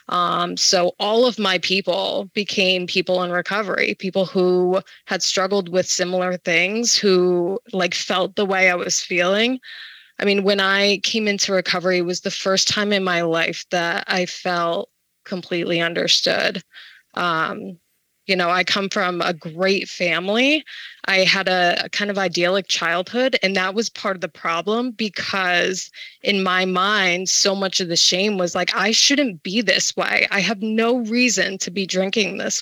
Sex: female